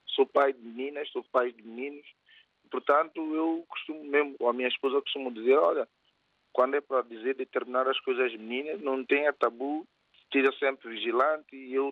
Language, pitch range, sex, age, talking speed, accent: Portuguese, 135-220 Hz, male, 40-59, 180 wpm, Brazilian